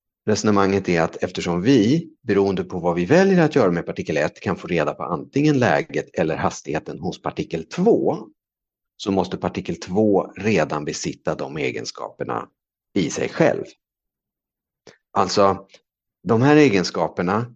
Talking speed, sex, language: 140 wpm, male, Swedish